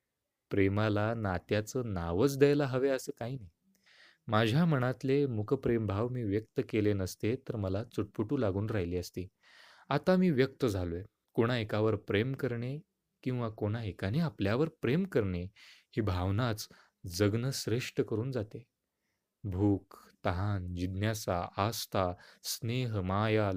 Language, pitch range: Marathi, 100-140 Hz